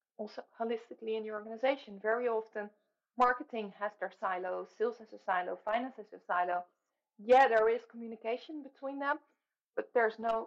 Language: English